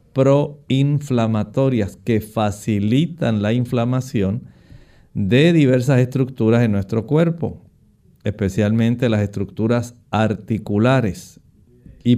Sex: male